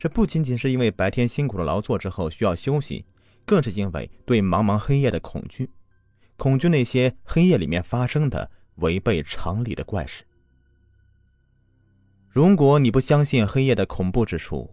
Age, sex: 30-49, male